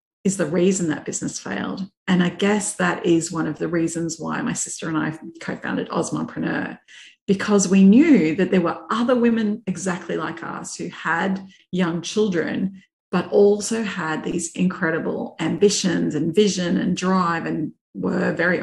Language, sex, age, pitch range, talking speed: English, female, 40-59, 170-205 Hz, 160 wpm